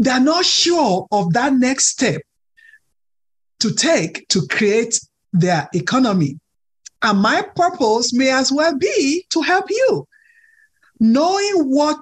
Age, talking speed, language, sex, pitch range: 50-69, 125 wpm, English, male, 185-295 Hz